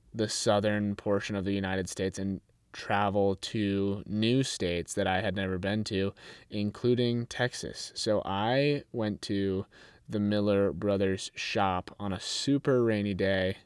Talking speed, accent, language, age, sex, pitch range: 145 wpm, American, English, 20-39, male, 95-110 Hz